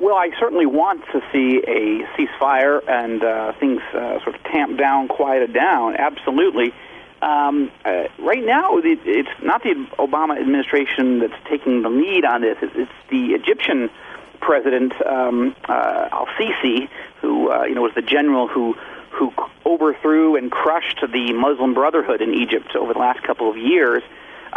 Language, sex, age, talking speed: English, male, 40-59, 155 wpm